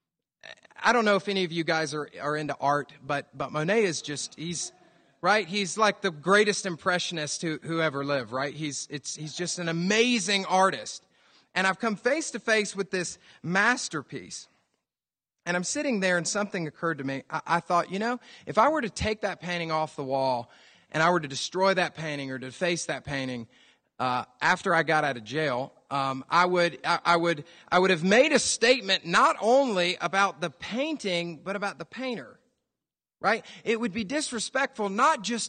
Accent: American